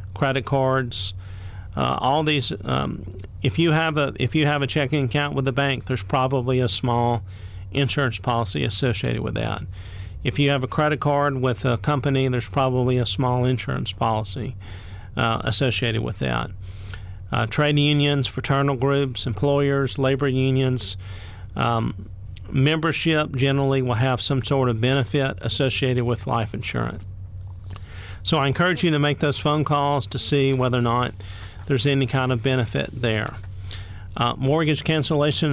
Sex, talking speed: male, 155 wpm